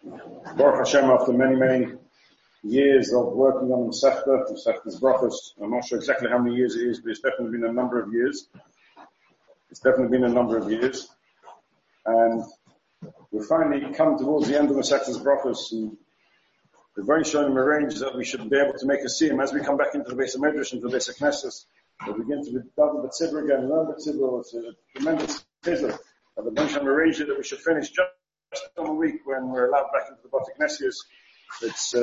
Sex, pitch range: male, 130-180 Hz